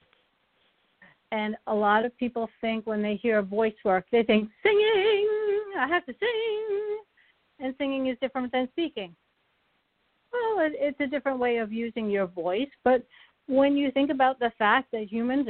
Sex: female